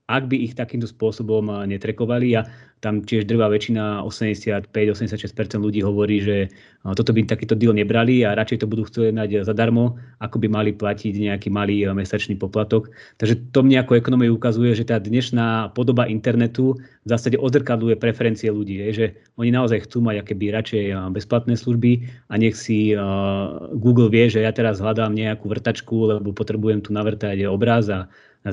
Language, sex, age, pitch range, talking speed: Slovak, male, 30-49, 105-120 Hz, 160 wpm